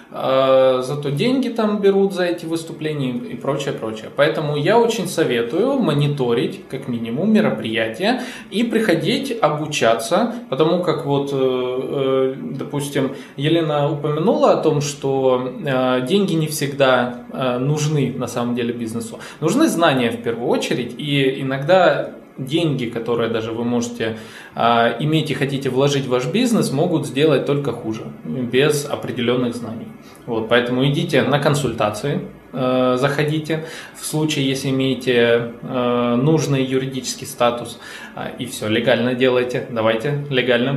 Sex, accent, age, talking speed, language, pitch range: male, native, 20-39, 125 wpm, Russian, 125-160 Hz